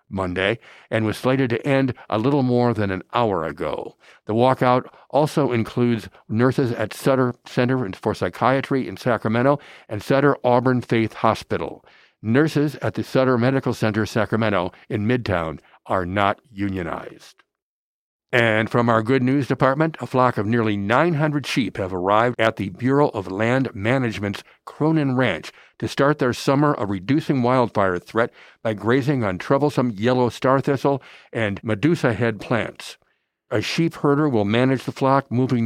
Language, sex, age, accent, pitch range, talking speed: English, male, 60-79, American, 105-135 Hz, 150 wpm